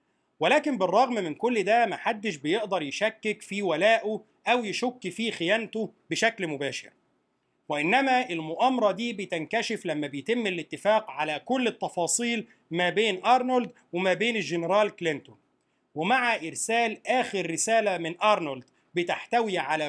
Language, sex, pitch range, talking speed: Arabic, male, 175-235 Hz, 125 wpm